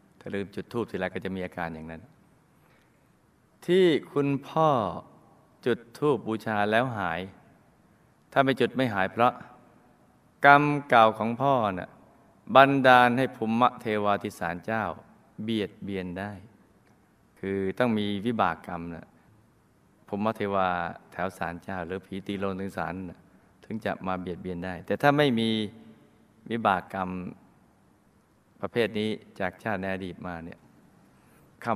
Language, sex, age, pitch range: Thai, male, 20-39, 95-125 Hz